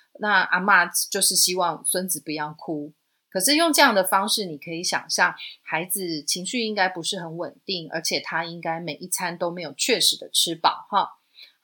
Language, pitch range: Chinese, 165-225 Hz